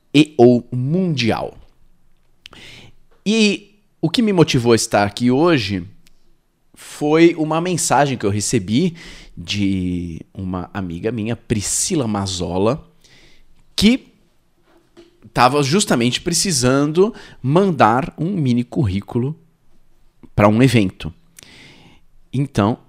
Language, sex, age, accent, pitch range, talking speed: Portuguese, male, 40-59, Brazilian, 105-160 Hz, 95 wpm